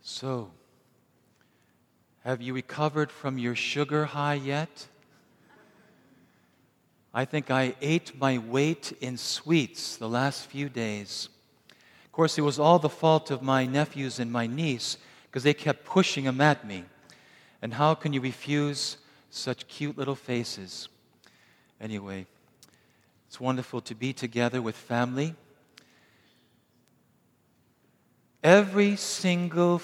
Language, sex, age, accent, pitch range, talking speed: English, male, 50-69, American, 130-170 Hz, 120 wpm